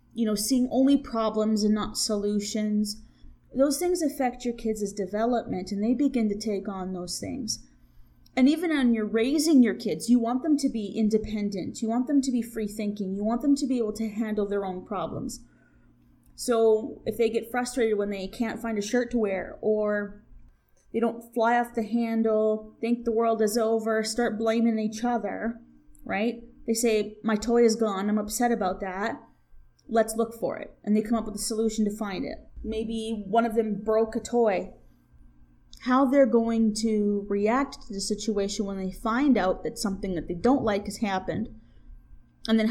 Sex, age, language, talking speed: female, 20-39, English, 190 wpm